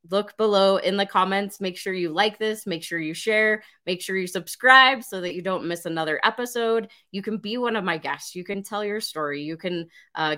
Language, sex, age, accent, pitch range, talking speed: English, female, 20-39, American, 165-215 Hz, 230 wpm